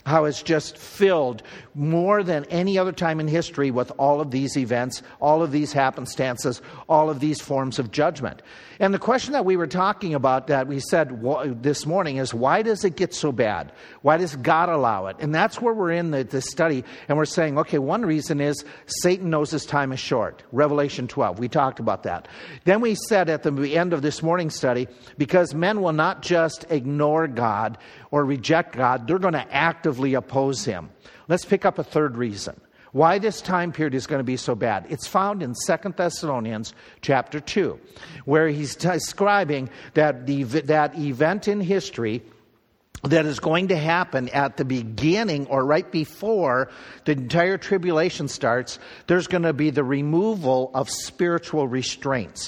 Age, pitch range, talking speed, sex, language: 50-69, 135-170 Hz, 185 wpm, male, English